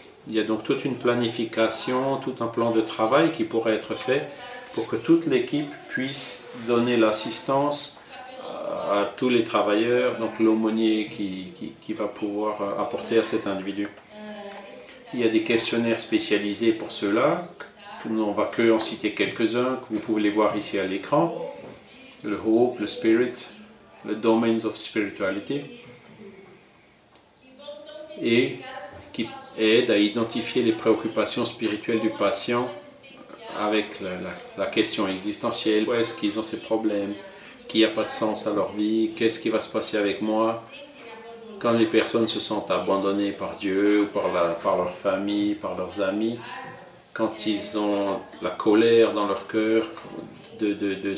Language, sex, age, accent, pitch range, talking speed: French, male, 40-59, French, 105-130 Hz, 155 wpm